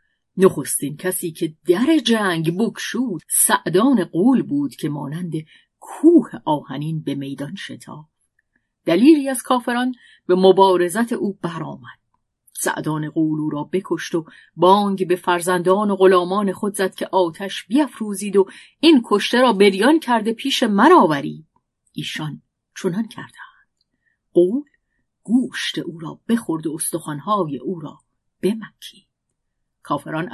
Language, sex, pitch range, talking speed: Persian, female, 165-220 Hz, 120 wpm